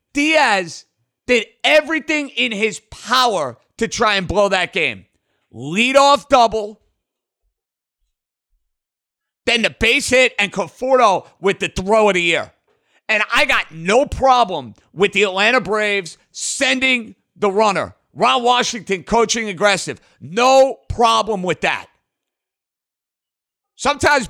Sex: male